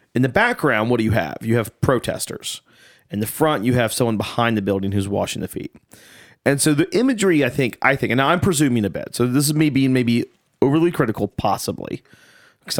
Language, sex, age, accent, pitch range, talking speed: English, male, 30-49, American, 115-140 Hz, 220 wpm